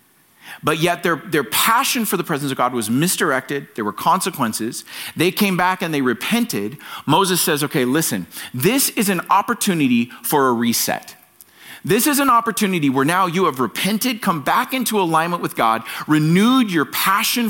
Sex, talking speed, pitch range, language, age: male, 170 wpm, 130-205 Hz, English, 40-59